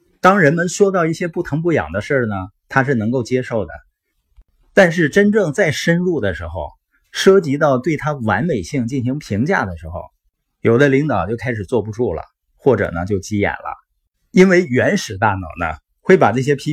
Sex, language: male, Chinese